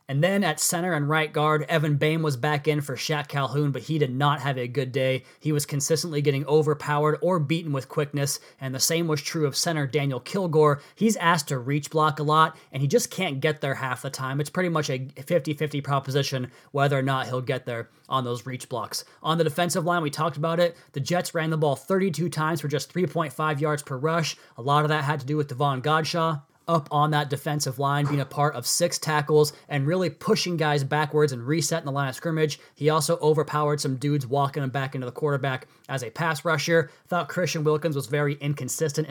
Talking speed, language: 225 wpm, English